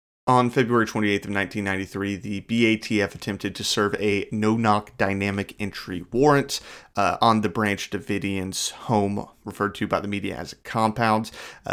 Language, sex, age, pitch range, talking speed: English, male, 30-49, 95-110 Hz, 150 wpm